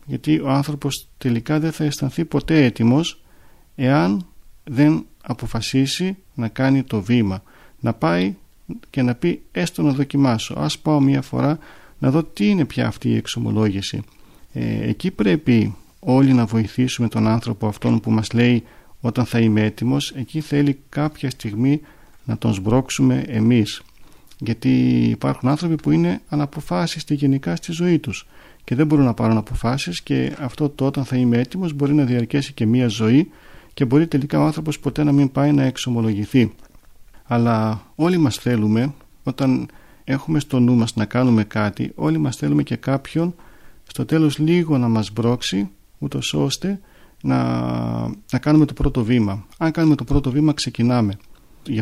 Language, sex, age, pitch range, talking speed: Greek, male, 40-59, 115-145 Hz, 160 wpm